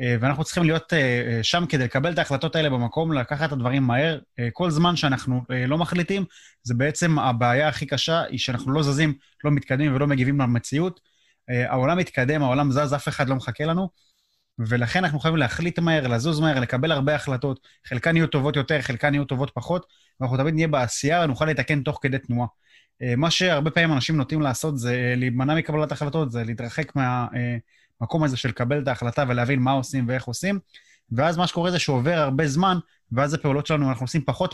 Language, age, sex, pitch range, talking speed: Hebrew, 20-39, male, 125-160 Hz, 170 wpm